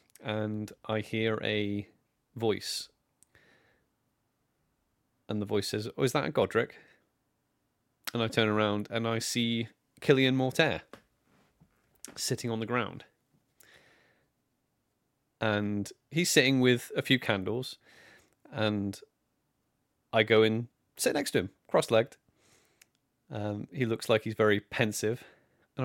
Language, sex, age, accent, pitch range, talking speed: English, male, 30-49, British, 105-120 Hz, 120 wpm